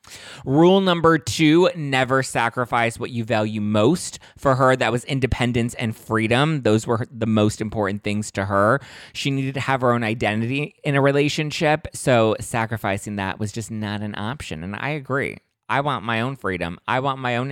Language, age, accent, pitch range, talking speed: English, 20-39, American, 105-135 Hz, 185 wpm